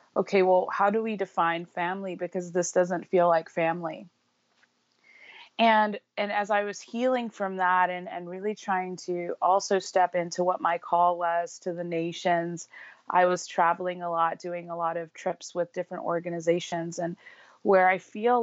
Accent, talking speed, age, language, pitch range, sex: American, 175 wpm, 30-49, English, 170-180 Hz, female